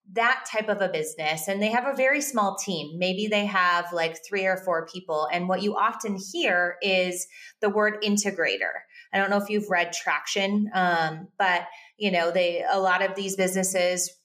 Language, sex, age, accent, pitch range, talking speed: English, female, 20-39, American, 175-220 Hz, 195 wpm